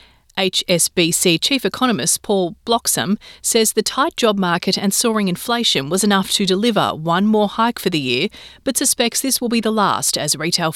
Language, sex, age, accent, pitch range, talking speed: English, female, 30-49, Australian, 165-220 Hz, 180 wpm